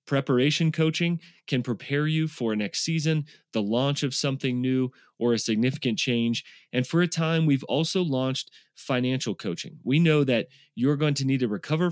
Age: 30-49